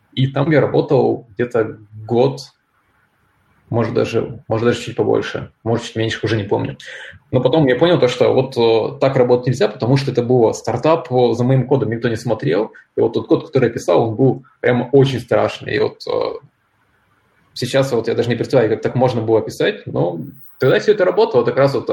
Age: 20-39